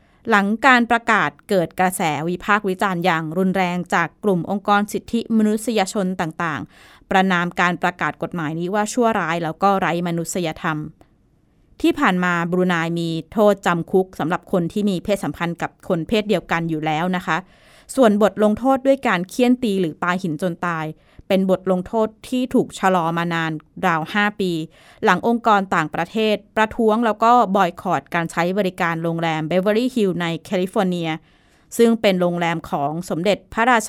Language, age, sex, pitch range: Thai, 20-39, female, 170-215 Hz